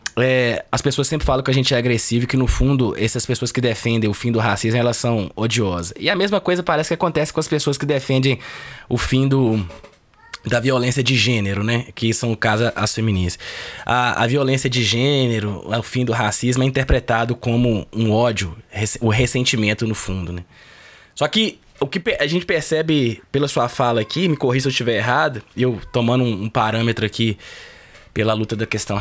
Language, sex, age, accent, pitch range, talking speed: Portuguese, male, 20-39, Brazilian, 115-145 Hz, 205 wpm